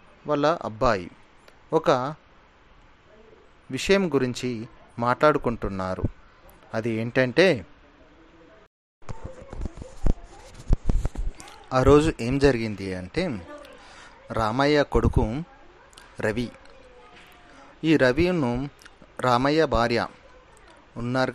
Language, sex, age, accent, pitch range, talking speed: Telugu, male, 30-49, native, 115-145 Hz, 60 wpm